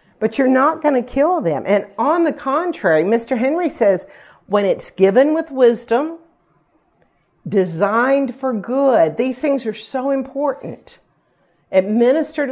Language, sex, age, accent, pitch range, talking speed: English, female, 50-69, American, 200-270 Hz, 135 wpm